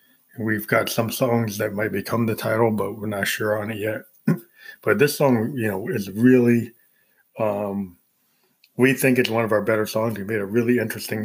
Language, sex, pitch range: English, male, 110-120 Hz